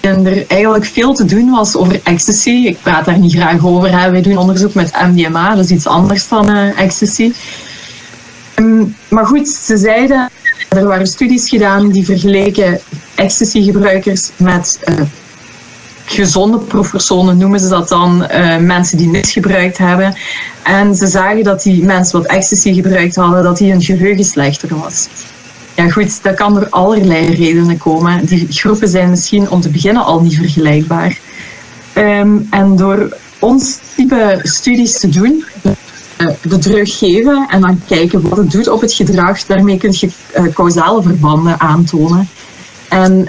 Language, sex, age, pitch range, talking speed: Dutch, female, 30-49, 170-205 Hz, 160 wpm